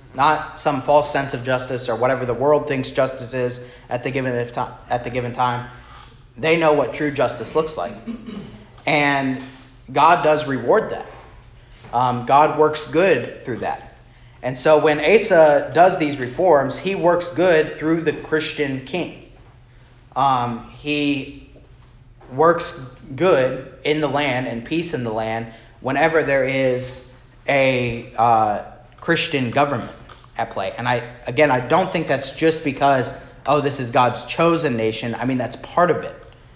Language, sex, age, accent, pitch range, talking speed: English, male, 30-49, American, 120-145 Hz, 150 wpm